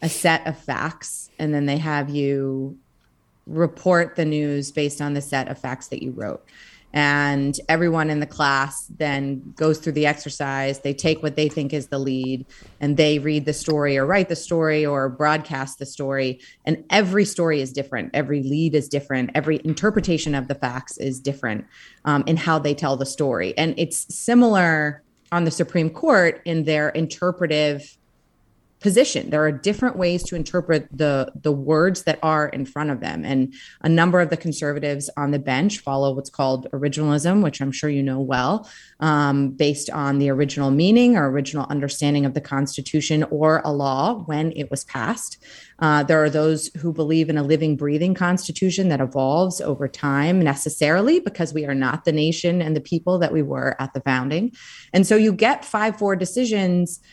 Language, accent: English, American